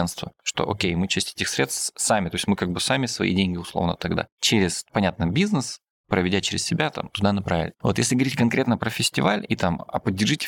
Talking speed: 205 wpm